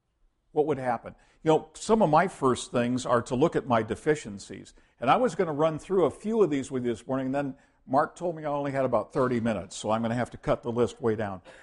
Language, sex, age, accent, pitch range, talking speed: English, male, 60-79, American, 110-145 Hz, 275 wpm